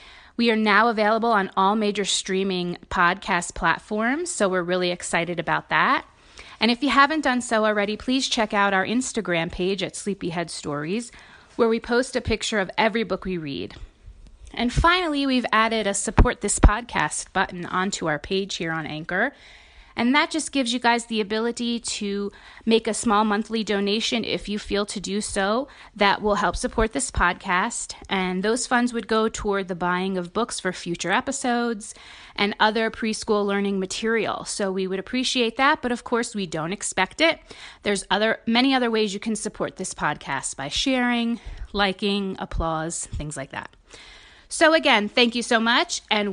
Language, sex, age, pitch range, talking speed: English, female, 30-49, 190-235 Hz, 175 wpm